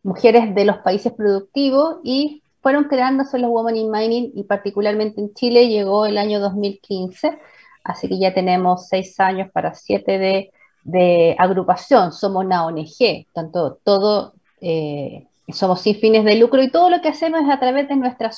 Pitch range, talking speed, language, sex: 200-250 Hz, 170 wpm, Spanish, female